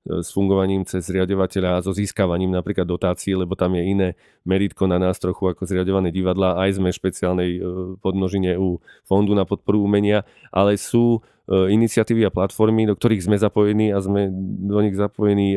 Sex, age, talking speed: male, 40-59, 160 wpm